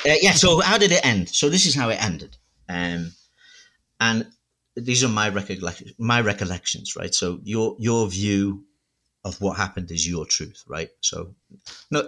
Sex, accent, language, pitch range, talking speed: male, British, English, 90-105 Hz, 175 wpm